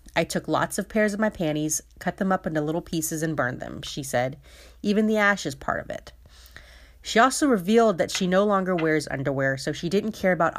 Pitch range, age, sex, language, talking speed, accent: 155-240 Hz, 30-49, female, English, 225 wpm, American